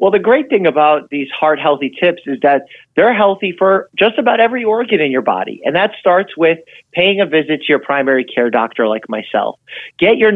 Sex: male